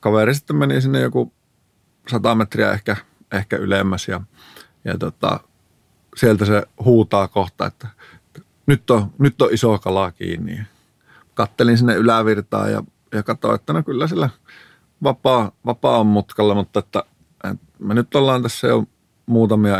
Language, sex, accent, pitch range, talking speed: Finnish, male, native, 100-125 Hz, 130 wpm